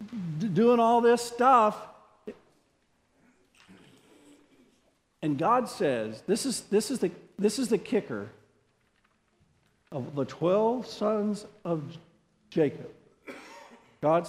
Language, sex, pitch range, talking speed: English, male, 130-190 Hz, 80 wpm